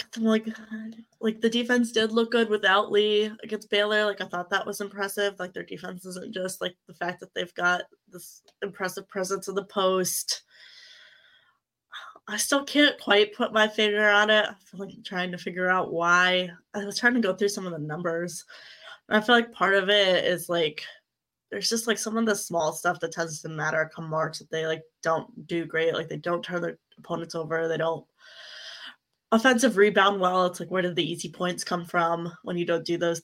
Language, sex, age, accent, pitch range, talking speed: English, female, 20-39, American, 170-205 Hz, 210 wpm